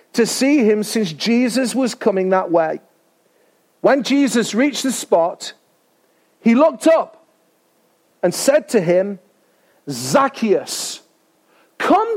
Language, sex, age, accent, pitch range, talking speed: English, male, 40-59, British, 200-280 Hz, 115 wpm